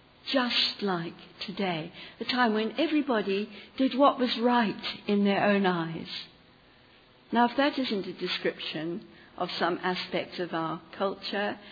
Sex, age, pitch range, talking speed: female, 60-79, 170-220 Hz, 140 wpm